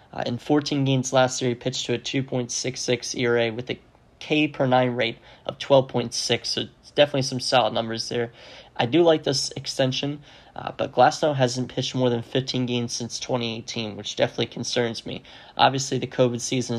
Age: 30-49